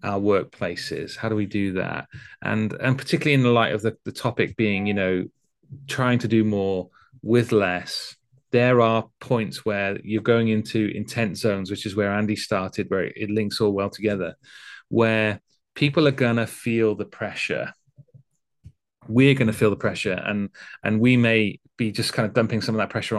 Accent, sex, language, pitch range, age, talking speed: British, male, English, 105-120 Hz, 30-49, 180 wpm